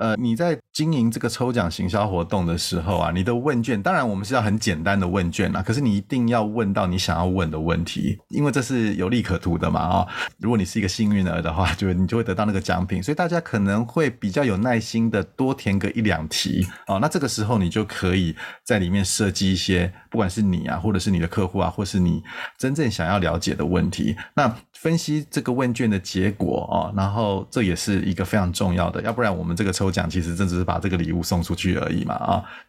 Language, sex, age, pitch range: Chinese, male, 30-49, 90-110 Hz